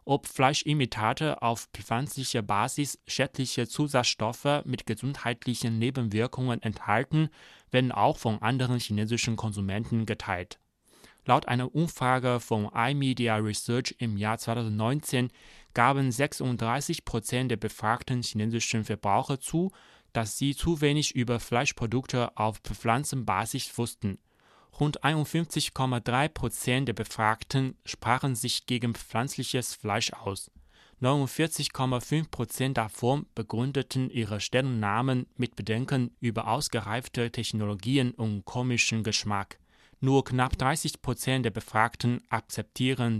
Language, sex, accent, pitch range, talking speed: German, male, German, 110-135 Hz, 105 wpm